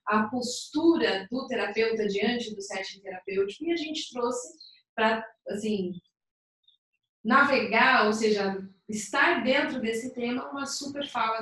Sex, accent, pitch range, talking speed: female, Brazilian, 195-245 Hz, 125 wpm